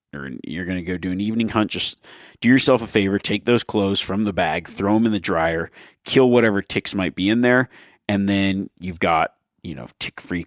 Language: English